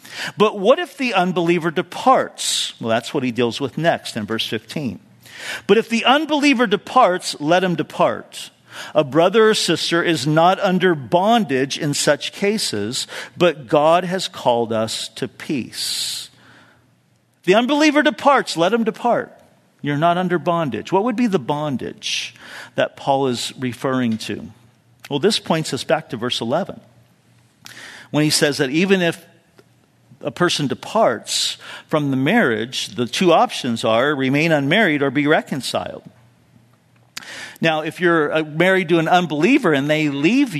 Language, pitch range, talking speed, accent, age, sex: English, 145-215 Hz, 150 wpm, American, 50-69, male